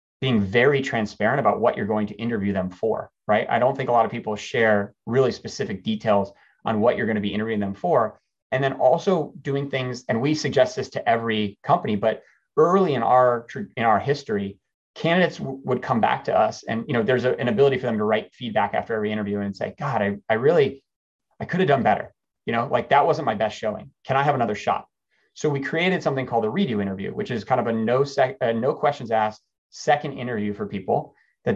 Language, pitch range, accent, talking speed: English, 110-150 Hz, American, 230 wpm